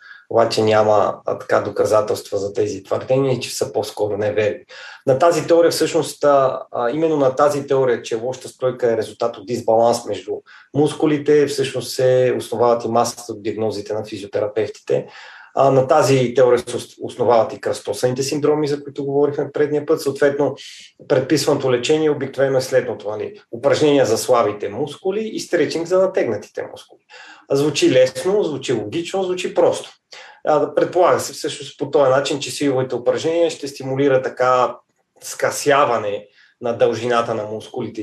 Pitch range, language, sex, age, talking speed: 125-165 Hz, Bulgarian, male, 30-49, 140 wpm